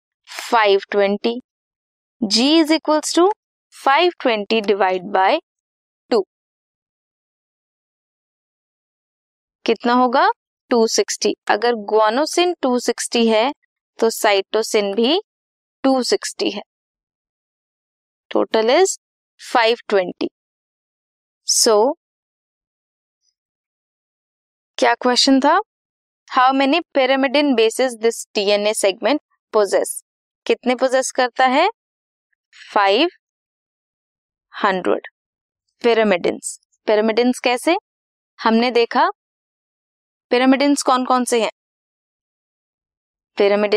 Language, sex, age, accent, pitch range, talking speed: Hindi, female, 20-39, native, 220-285 Hz, 75 wpm